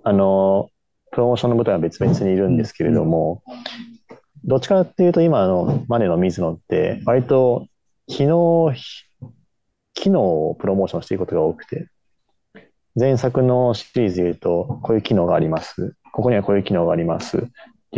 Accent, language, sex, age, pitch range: native, Japanese, male, 30-49, 95-130 Hz